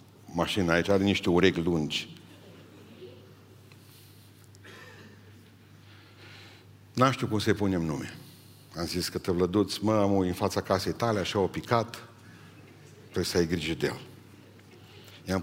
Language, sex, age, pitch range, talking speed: Romanian, male, 60-79, 95-115 Hz, 130 wpm